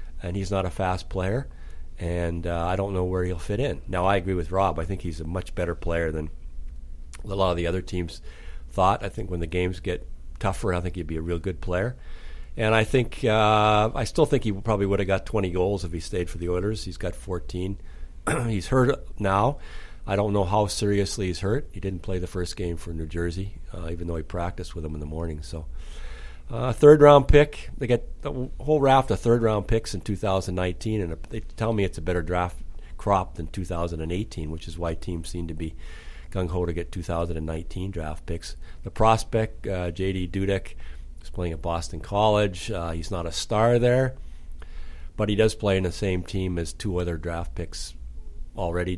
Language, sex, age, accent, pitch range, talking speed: English, male, 40-59, American, 80-100 Hz, 210 wpm